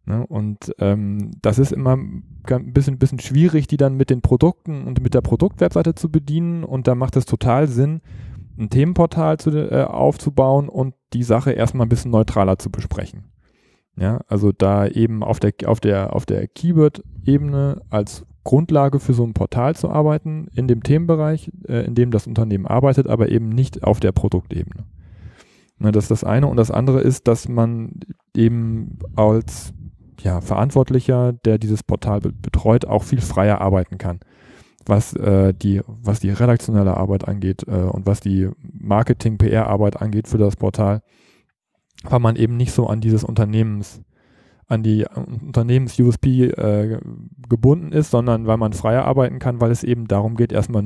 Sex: male